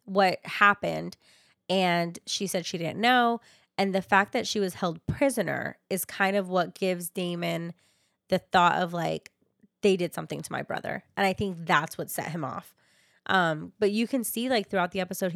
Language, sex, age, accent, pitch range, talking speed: English, female, 20-39, American, 170-210 Hz, 190 wpm